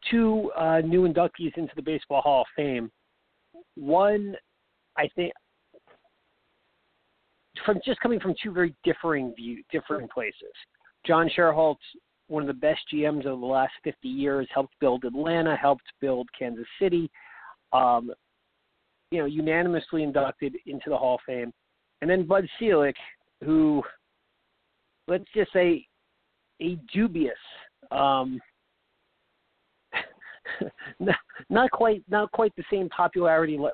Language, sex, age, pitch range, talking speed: English, male, 40-59, 140-180 Hz, 130 wpm